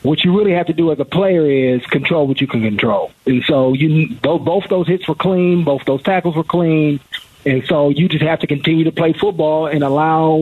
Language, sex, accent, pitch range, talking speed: English, male, American, 145-180 Hz, 230 wpm